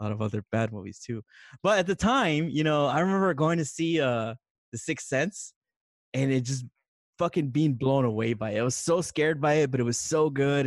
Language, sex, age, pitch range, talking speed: English, male, 20-39, 115-155 Hz, 230 wpm